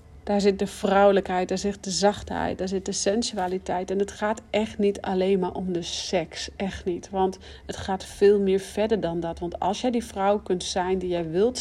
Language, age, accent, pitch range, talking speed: Dutch, 40-59, Dutch, 185-220 Hz, 215 wpm